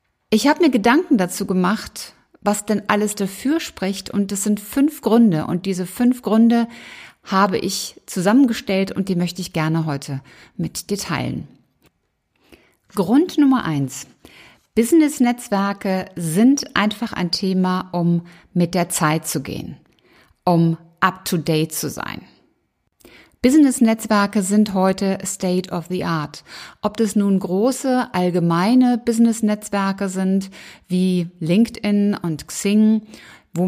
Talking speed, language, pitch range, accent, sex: 120 wpm, German, 180-220 Hz, German, female